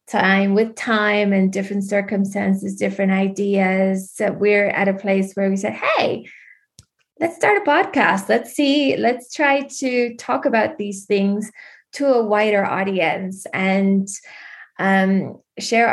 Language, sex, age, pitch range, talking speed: English, female, 20-39, 195-215 Hz, 135 wpm